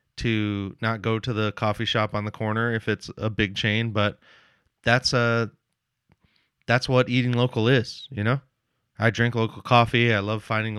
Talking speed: 180 wpm